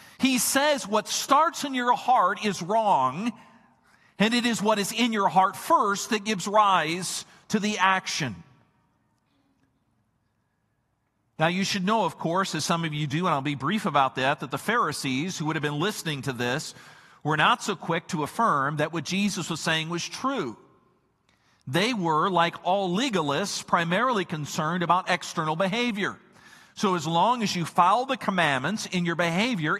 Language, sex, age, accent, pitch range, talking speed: English, male, 50-69, American, 170-230 Hz, 170 wpm